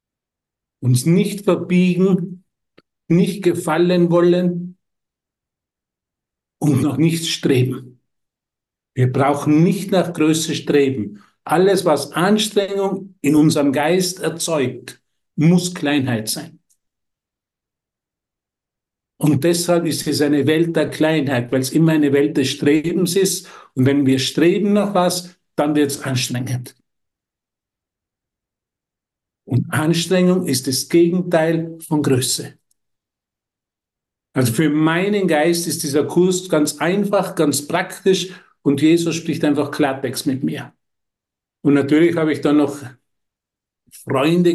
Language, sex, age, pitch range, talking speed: German, male, 50-69, 135-175 Hz, 115 wpm